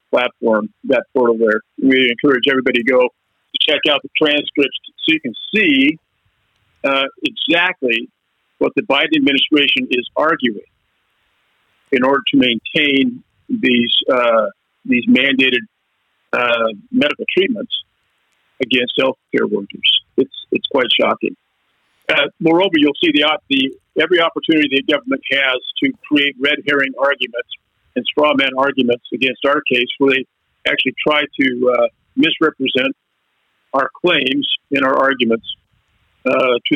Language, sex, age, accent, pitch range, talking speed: English, male, 50-69, American, 125-150 Hz, 135 wpm